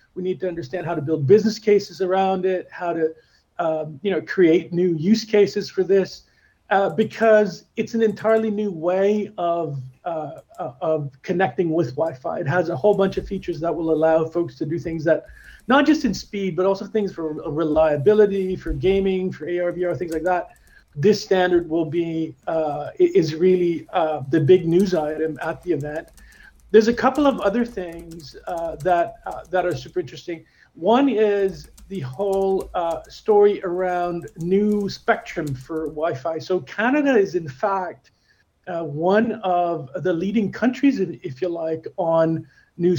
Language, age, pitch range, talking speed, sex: English, 40-59, 165-205 Hz, 170 wpm, male